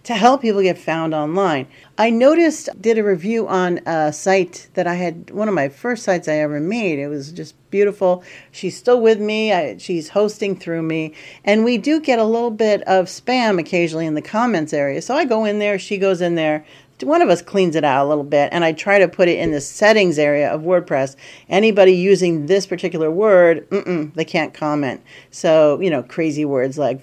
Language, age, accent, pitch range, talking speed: English, 50-69, American, 155-215 Hz, 215 wpm